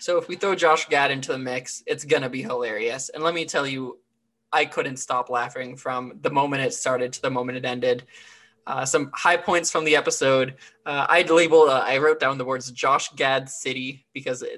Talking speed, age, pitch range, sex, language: 215 wpm, 20-39, 125-150 Hz, male, English